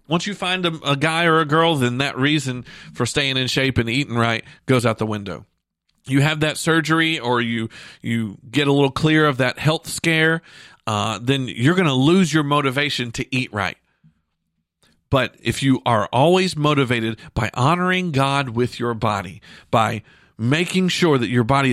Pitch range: 115-150 Hz